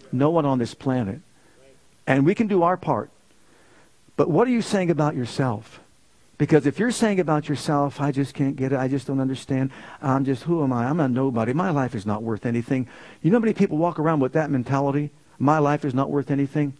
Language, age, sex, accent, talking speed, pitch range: English, 50-69, male, American, 225 wpm, 135-180 Hz